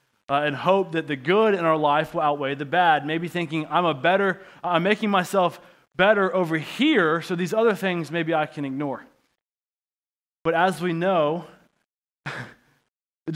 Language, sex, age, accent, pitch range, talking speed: English, male, 20-39, American, 160-195 Hz, 165 wpm